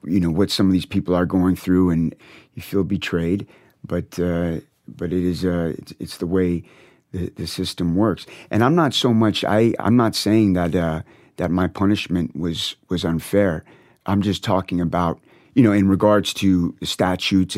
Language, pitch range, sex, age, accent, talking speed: English, 90-105 Hz, male, 30-49, American, 190 wpm